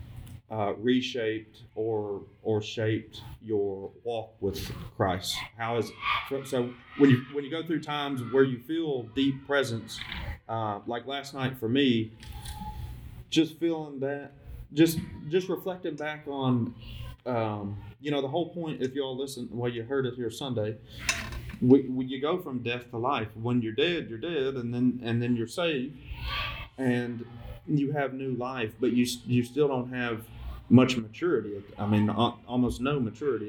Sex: male